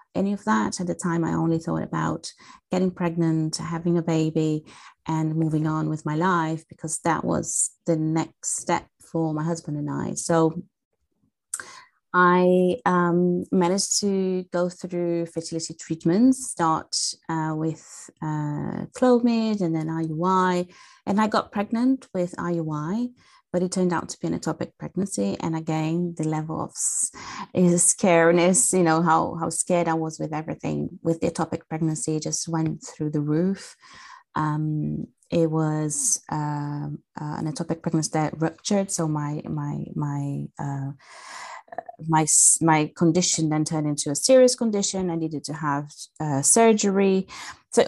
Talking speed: 150 wpm